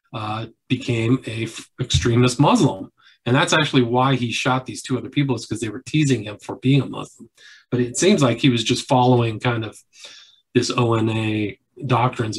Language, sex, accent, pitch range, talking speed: English, male, American, 115-135 Hz, 190 wpm